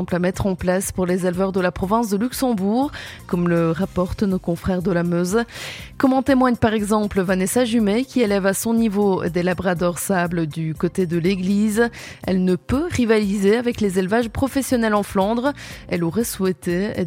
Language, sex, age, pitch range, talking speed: French, female, 20-39, 180-225 Hz, 185 wpm